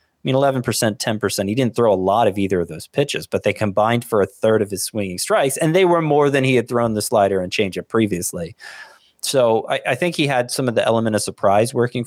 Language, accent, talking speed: English, American, 255 wpm